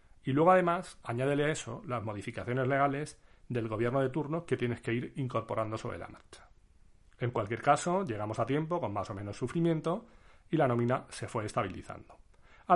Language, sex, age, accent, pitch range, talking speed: Spanish, male, 40-59, Spanish, 110-145 Hz, 185 wpm